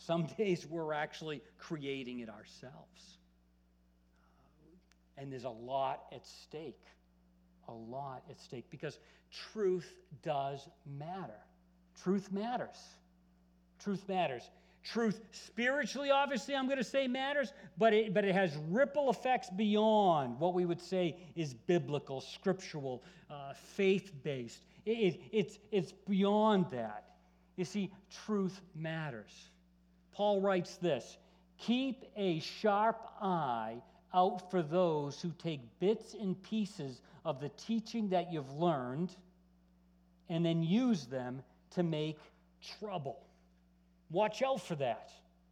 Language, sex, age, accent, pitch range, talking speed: English, male, 50-69, American, 130-200 Hz, 120 wpm